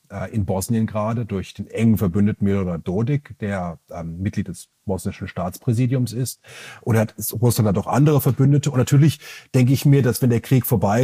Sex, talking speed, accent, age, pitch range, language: male, 175 wpm, German, 30-49, 105-130 Hz, German